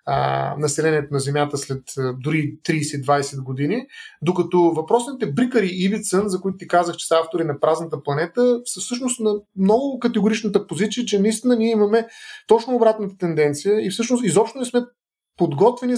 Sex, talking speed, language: male, 150 wpm, Bulgarian